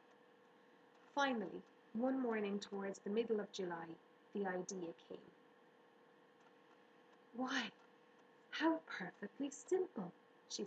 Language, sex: English, female